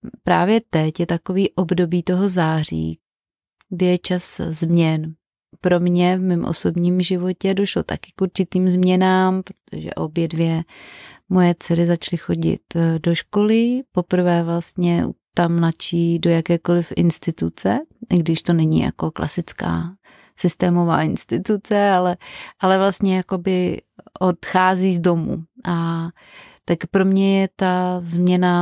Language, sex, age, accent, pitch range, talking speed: Czech, female, 30-49, native, 170-190 Hz, 125 wpm